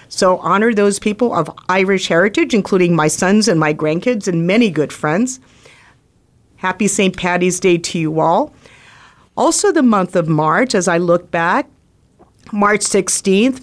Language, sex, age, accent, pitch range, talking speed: English, female, 50-69, American, 170-215 Hz, 155 wpm